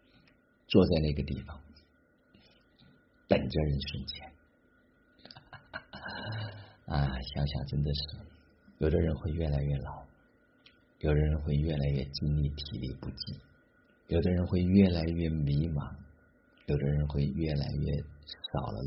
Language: Chinese